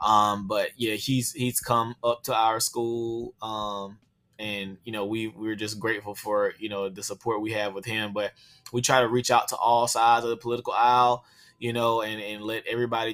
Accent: American